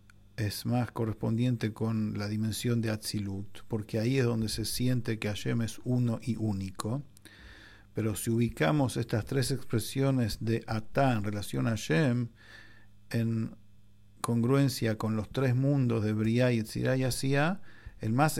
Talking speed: 145 wpm